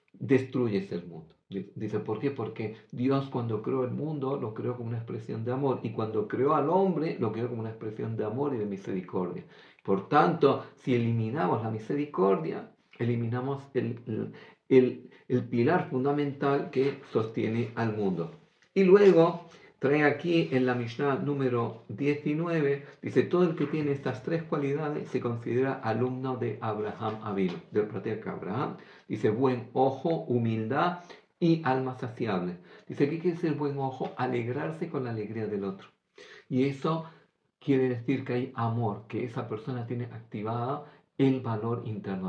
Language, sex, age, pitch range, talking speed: Greek, male, 50-69, 115-145 Hz, 160 wpm